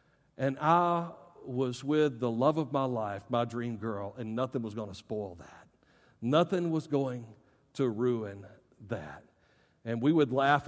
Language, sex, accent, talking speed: English, male, American, 165 wpm